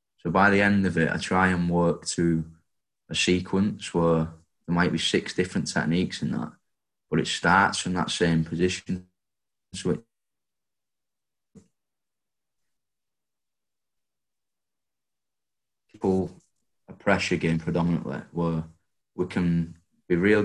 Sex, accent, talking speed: male, British, 115 wpm